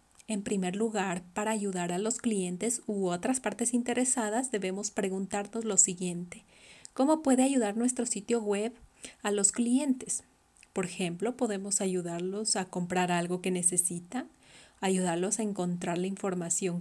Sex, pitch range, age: female, 195-250 Hz, 30-49